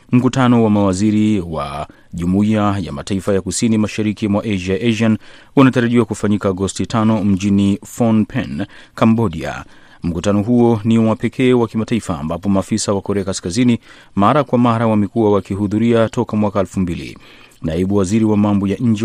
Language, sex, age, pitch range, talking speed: Swahili, male, 30-49, 95-115 Hz, 150 wpm